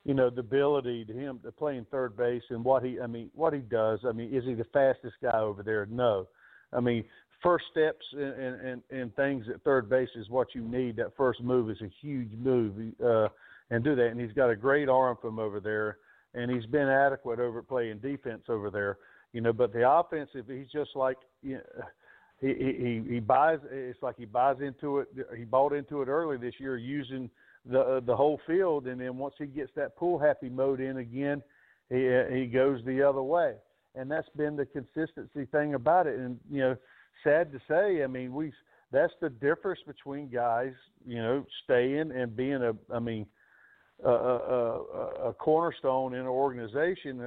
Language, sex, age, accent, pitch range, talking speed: English, male, 50-69, American, 120-140 Hz, 205 wpm